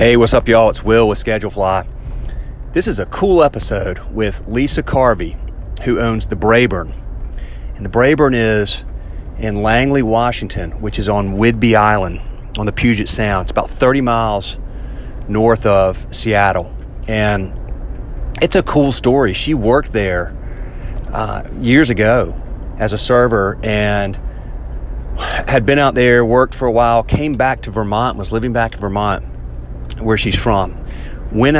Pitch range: 100-125 Hz